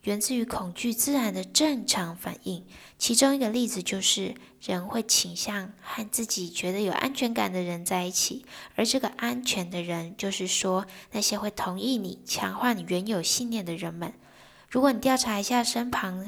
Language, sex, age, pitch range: Chinese, female, 10-29, 180-230 Hz